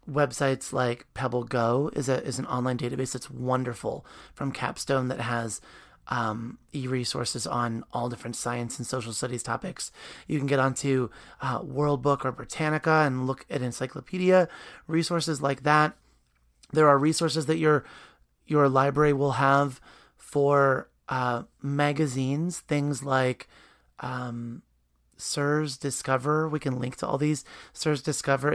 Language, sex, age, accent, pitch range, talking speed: English, male, 30-49, American, 125-150 Hz, 145 wpm